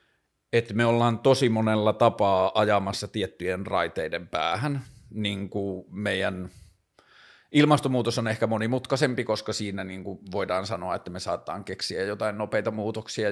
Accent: native